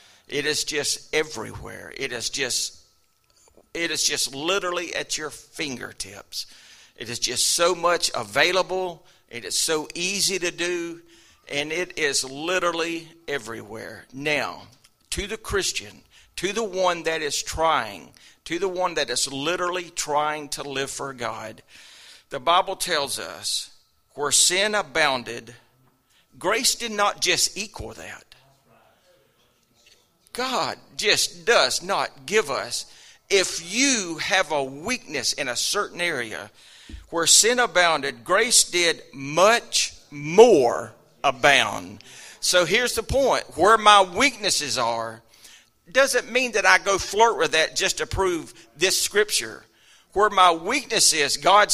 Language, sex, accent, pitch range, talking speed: English, male, American, 150-205 Hz, 130 wpm